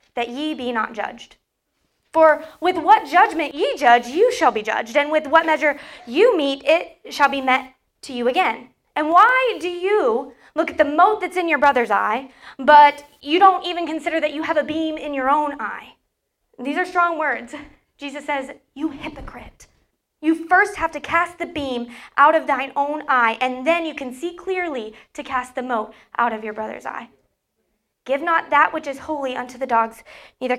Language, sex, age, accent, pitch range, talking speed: English, female, 20-39, American, 245-315 Hz, 195 wpm